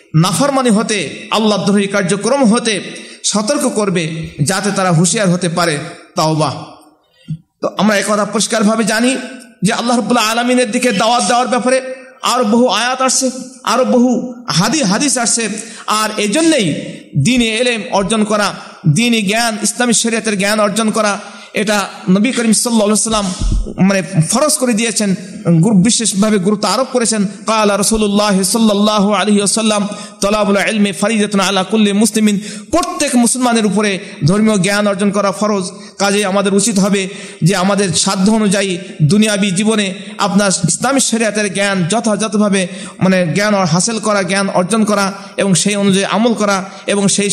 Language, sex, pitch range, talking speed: Bengali, male, 195-225 Hz, 100 wpm